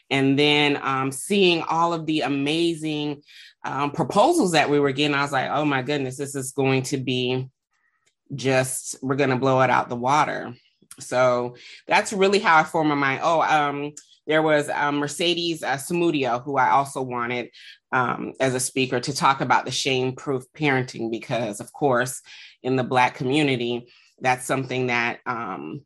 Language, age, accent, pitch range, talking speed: English, 20-39, American, 130-150 Hz, 170 wpm